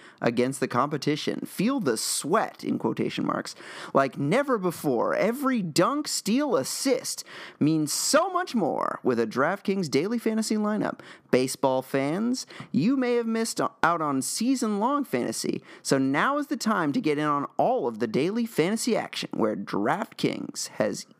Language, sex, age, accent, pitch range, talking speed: English, male, 30-49, American, 150-235 Hz, 155 wpm